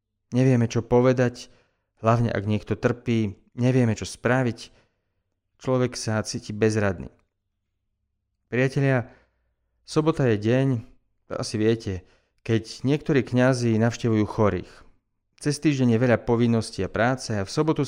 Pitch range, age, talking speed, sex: 100-125 Hz, 40-59, 120 wpm, male